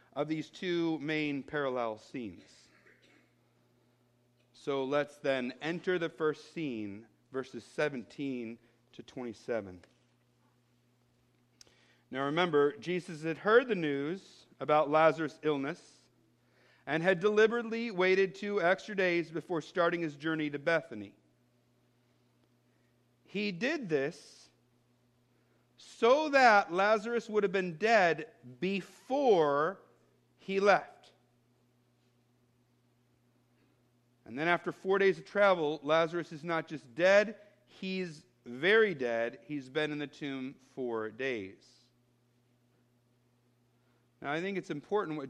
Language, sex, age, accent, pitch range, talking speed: English, male, 50-69, American, 120-170 Hz, 105 wpm